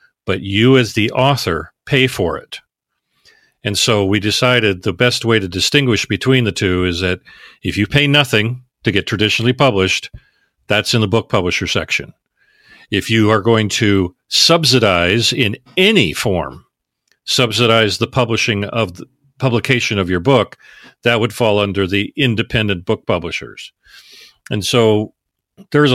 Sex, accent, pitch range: male, American, 95-115 Hz